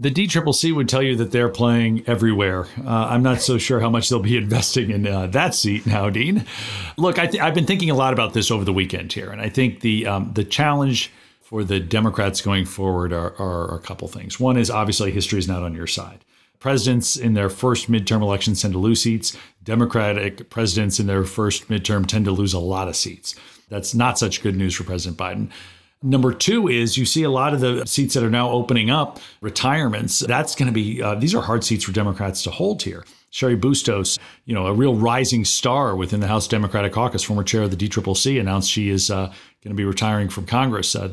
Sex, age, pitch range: male, 40-59, 100-125 Hz